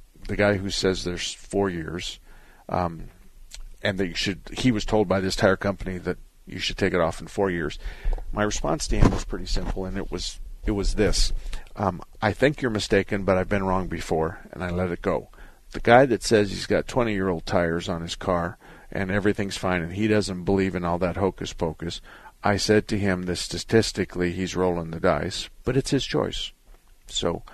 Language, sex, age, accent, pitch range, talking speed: English, male, 50-69, American, 85-105 Hz, 195 wpm